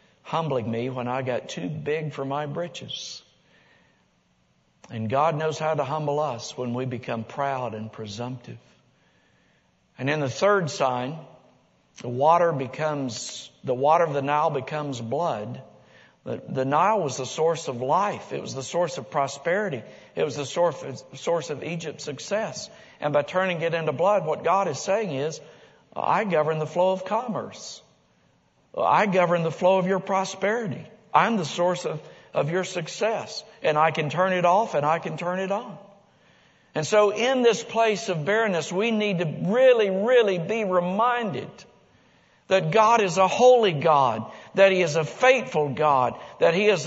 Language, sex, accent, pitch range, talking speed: English, male, American, 140-190 Hz, 170 wpm